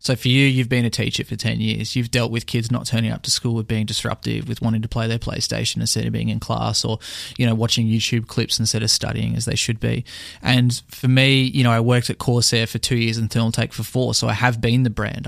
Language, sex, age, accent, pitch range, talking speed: English, male, 20-39, Australian, 115-130 Hz, 265 wpm